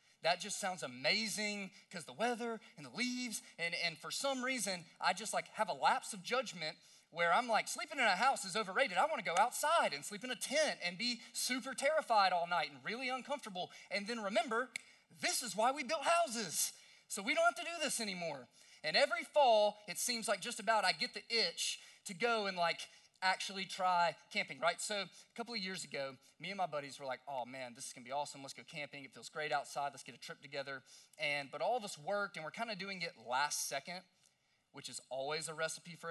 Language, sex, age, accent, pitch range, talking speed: English, male, 30-49, American, 155-230 Hz, 235 wpm